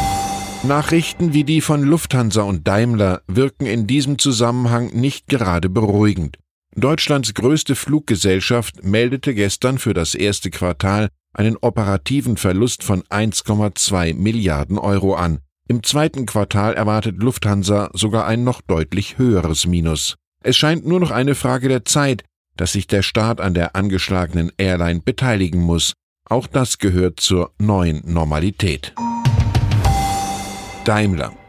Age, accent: 10-29, German